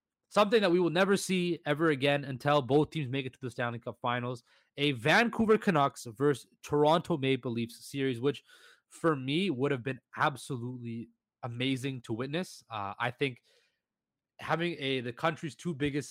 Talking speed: 170 wpm